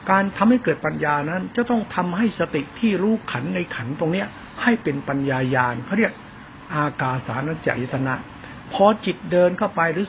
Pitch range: 135-180 Hz